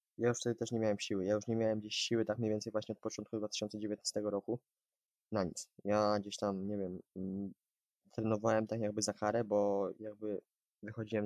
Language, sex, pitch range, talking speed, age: Polish, male, 105-120 Hz, 190 wpm, 20-39